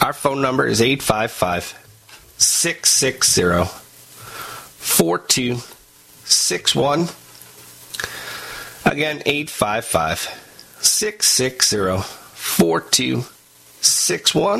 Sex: male